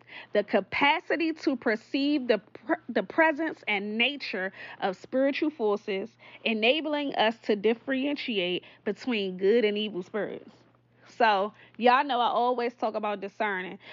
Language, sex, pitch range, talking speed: English, female, 210-290 Hz, 125 wpm